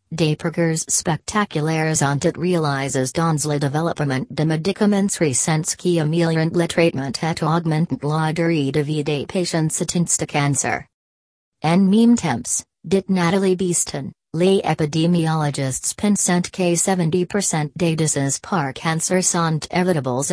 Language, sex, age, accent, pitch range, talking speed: French, female, 40-59, American, 150-175 Hz, 120 wpm